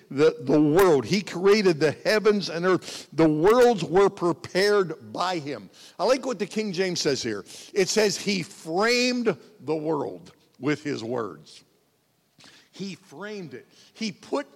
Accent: American